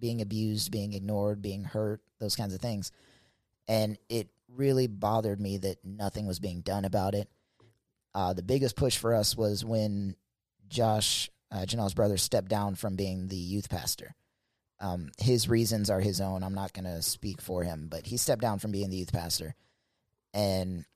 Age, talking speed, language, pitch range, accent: 30-49, 185 wpm, English, 95-115 Hz, American